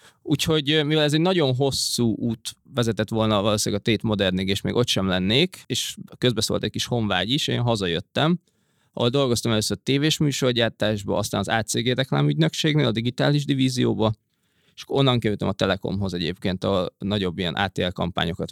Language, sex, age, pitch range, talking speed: Hungarian, male, 20-39, 100-125 Hz, 160 wpm